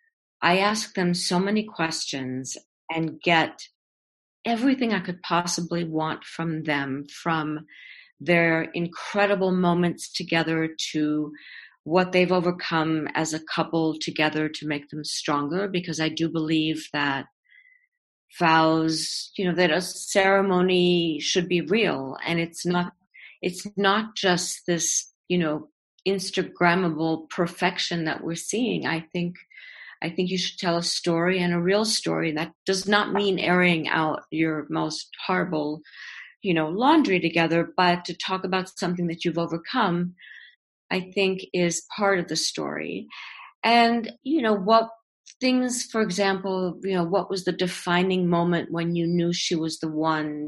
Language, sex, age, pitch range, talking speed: English, female, 50-69, 160-200 Hz, 145 wpm